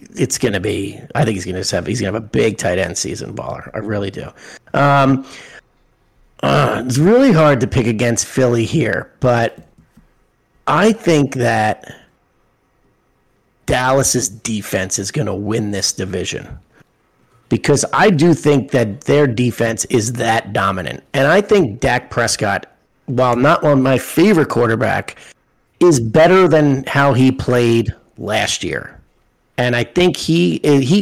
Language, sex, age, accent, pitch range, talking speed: English, male, 40-59, American, 110-145 Hz, 145 wpm